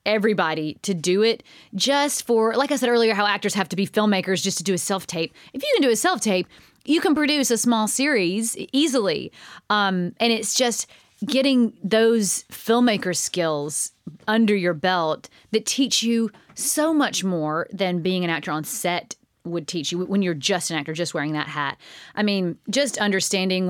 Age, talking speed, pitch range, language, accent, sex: 30-49, 185 wpm, 175-230 Hz, English, American, female